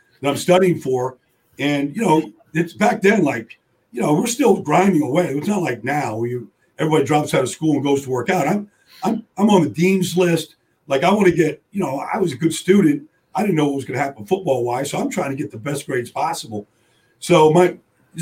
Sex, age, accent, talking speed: male, 50-69, American, 235 wpm